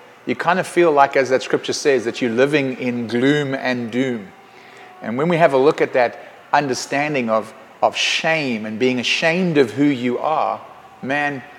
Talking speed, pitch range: 185 wpm, 125-145 Hz